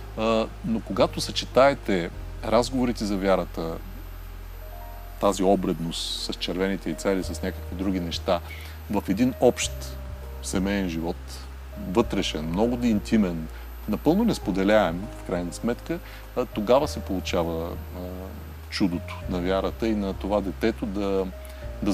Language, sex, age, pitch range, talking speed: Bulgarian, male, 40-59, 85-105 Hz, 115 wpm